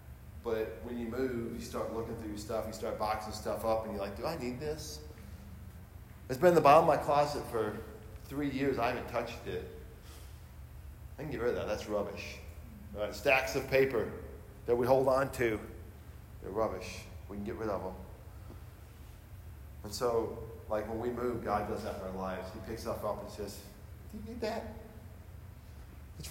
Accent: American